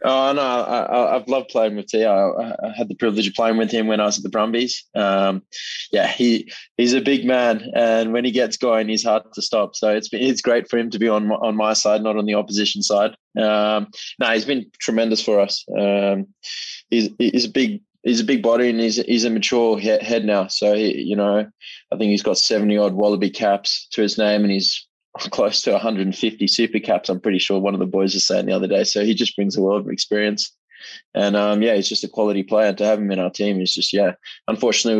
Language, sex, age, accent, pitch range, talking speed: English, male, 20-39, Australian, 100-115 Hz, 245 wpm